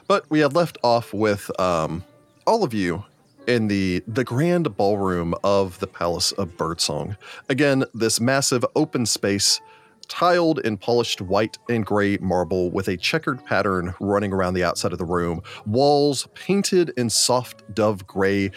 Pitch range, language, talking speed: 100-135 Hz, English, 160 wpm